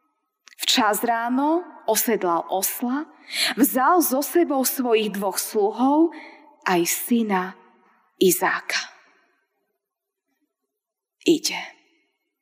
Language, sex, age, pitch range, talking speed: Slovak, female, 20-39, 195-285 Hz, 70 wpm